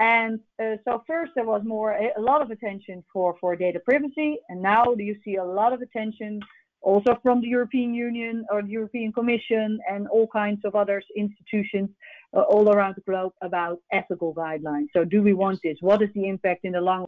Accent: Dutch